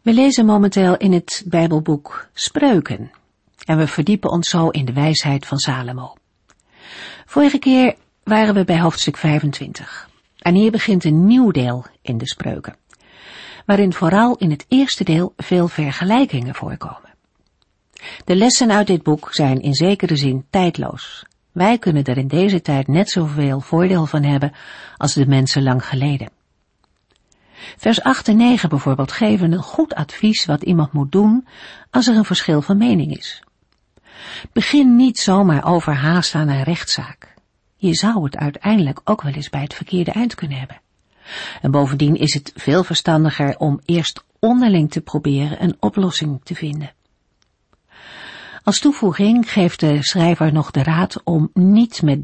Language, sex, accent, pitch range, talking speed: Dutch, female, Dutch, 145-200 Hz, 155 wpm